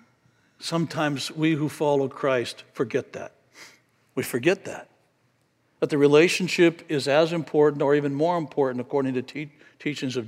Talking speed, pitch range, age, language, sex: 140 wpm, 140-170 Hz, 60-79, English, male